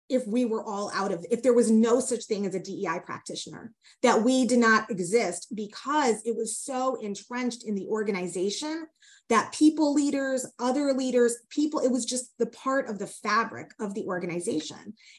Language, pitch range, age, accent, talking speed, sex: English, 215-255 Hz, 20-39, American, 180 wpm, female